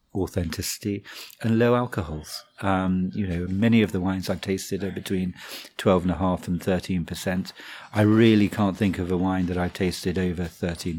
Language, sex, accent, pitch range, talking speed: English, male, British, 90-110 Hz, 185 wpm